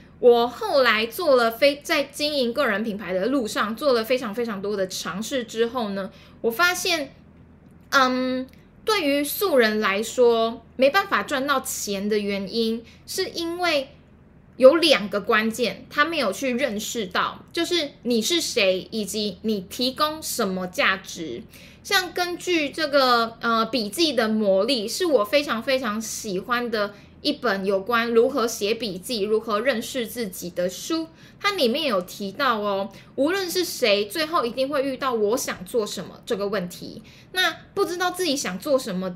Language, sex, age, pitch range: Chinese, female, 10-29, 210-285 Hz